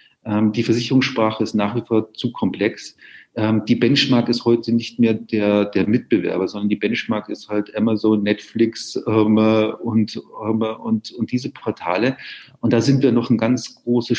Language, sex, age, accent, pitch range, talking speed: German, male, 40-59, German, 110-145 Hz, 155 wpm